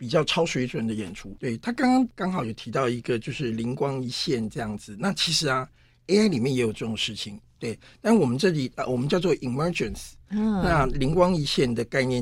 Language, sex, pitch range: Chinese, male, 125-175 Hz